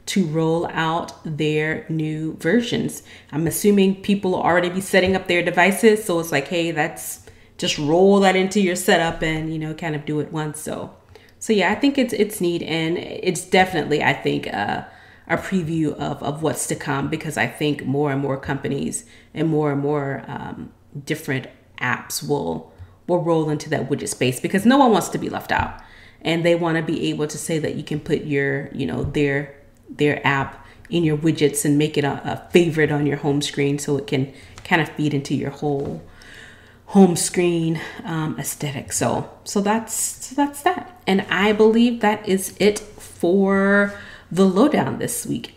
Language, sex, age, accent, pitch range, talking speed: English, female, 30-49, American, 145-190 Hz, 190 wpm